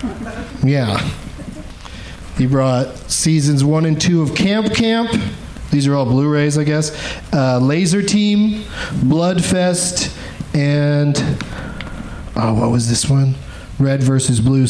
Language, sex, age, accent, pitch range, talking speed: English, male, 40-59, American, 135-195 Hz, 125 wpm